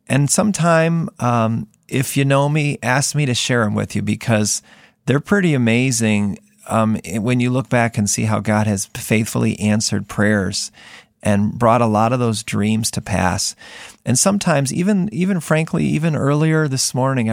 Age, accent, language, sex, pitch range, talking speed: 40-59, American, English, male, 110-140 Hz, 170 wpm